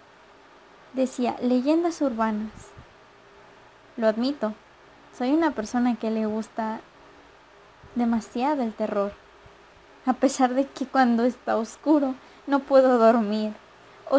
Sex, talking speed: female, 105 wpm